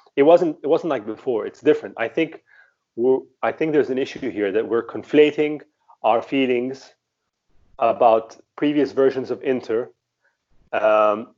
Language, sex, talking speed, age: English, male, 150 wpm, 30-49